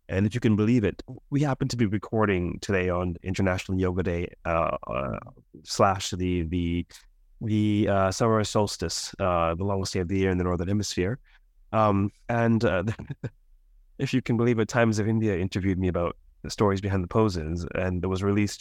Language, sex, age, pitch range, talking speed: English, male, 30-49, 95-125 Hz, 190 wpm